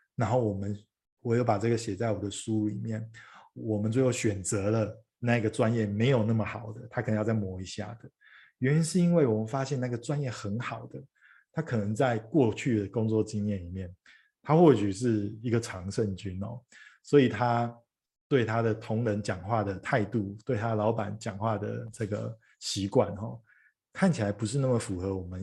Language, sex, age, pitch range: Chinese, male, 20-39, 105-120 Hz